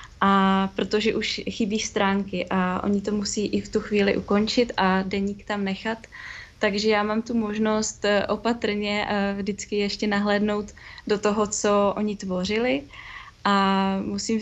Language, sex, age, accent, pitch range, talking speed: Czech, female, 20-39, native, 200-215 Hz, 140 wpm